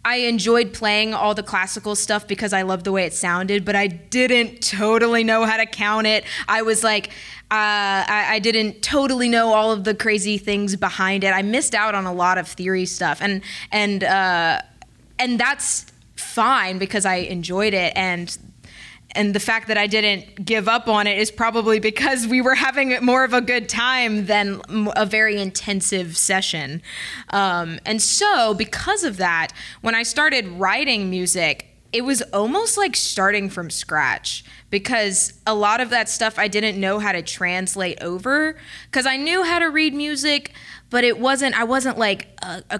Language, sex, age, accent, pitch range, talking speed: English, female, 20-39, American, 195-235 Hz, 180 wpm